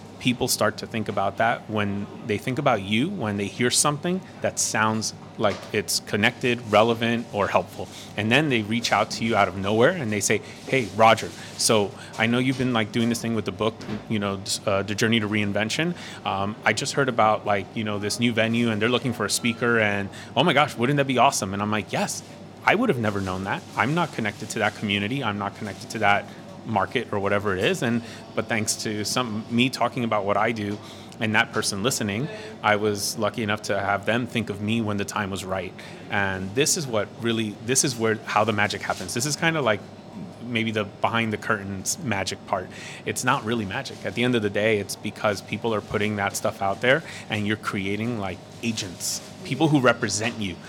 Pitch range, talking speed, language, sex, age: 105-120 Hz, 225 wpm, English, male, 30-49